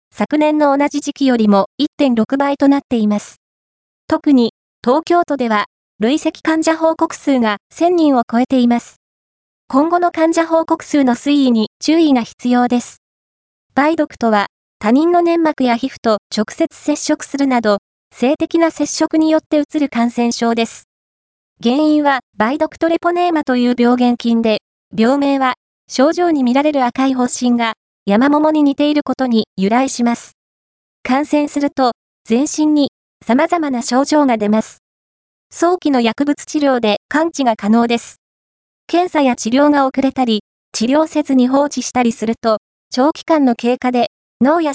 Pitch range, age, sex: 235-300 Hz, 20-39, female